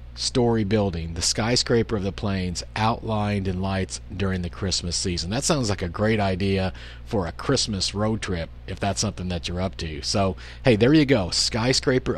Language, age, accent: English, 40-59, American